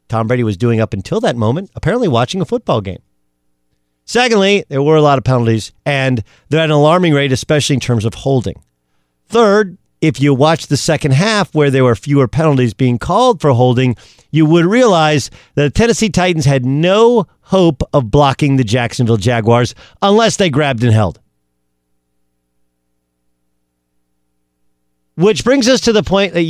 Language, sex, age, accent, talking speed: English, male, 40-59, American, 170 wpm